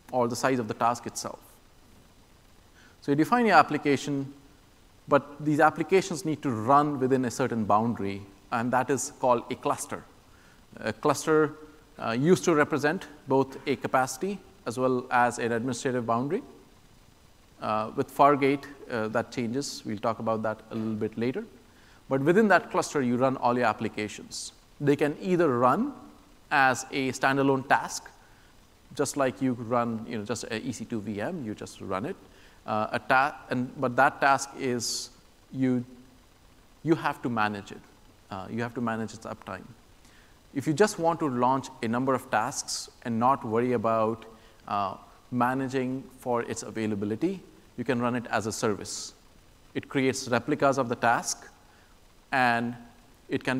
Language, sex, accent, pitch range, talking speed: English, male, Indian, 110-140 Hz, 160 wpm